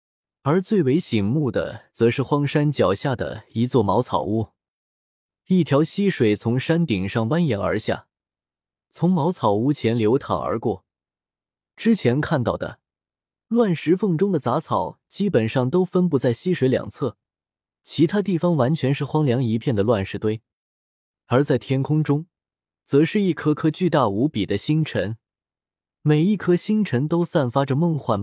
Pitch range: 110-165 Hz